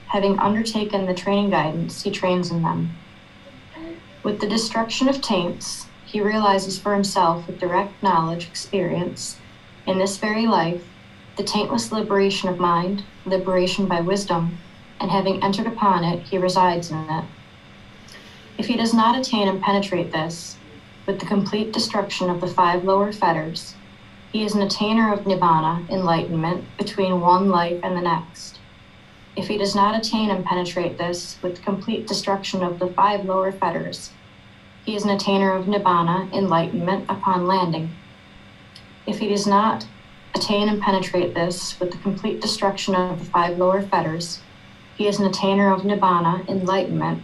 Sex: female